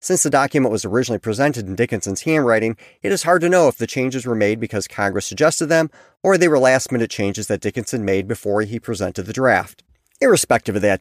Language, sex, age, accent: English, male, 40-59, American